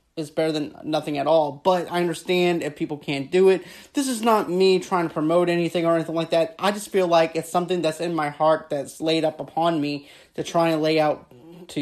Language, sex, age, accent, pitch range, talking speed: English, male, 30-49, American, 150-170 Hz, 240 wpm